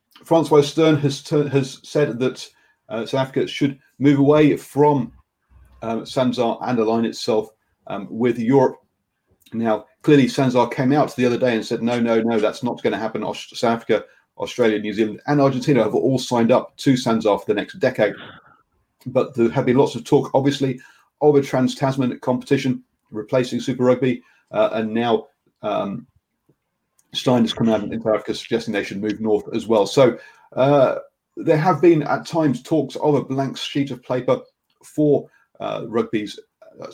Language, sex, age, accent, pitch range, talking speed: English, male, 40-59, British, 115-145 Hz, 170 wpm